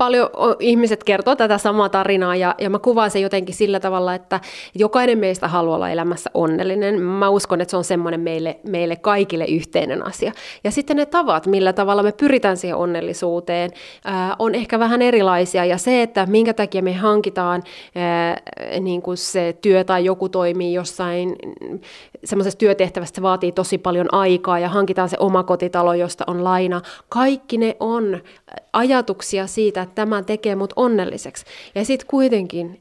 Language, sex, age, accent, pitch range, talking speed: Finnish, female, 30-49, native, 180-220 Hz, 155 wpm